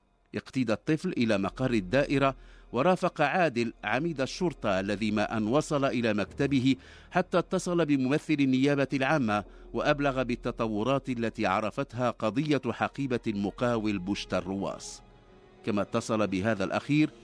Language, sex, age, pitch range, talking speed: English, male, 50-69, 115-155 Hz, 115 wpm